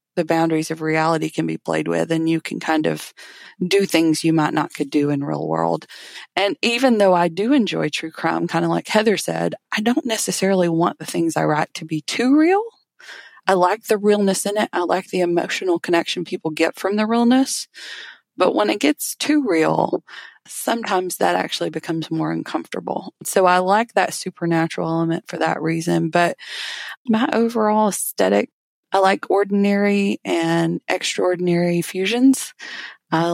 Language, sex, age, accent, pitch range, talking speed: English, female, 20-39, American, 165-205 Hz, 175 wpm